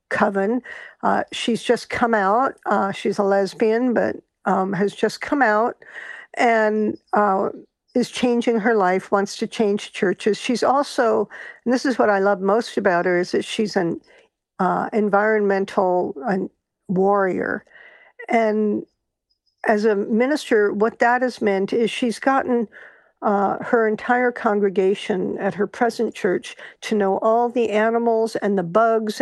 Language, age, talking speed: English, 50-69, 145 wpm